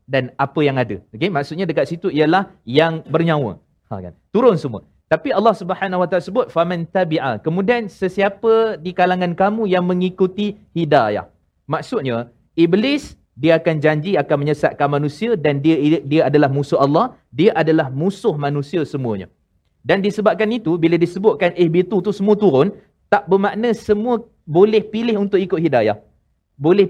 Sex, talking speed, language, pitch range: male, 150 wpm, Malayalam, 160-200 Hz